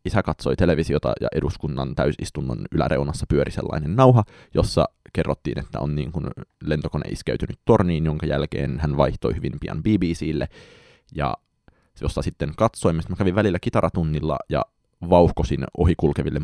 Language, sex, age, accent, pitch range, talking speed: Finnish, male, 20-39, native, 75-95 Hz, 135 wpm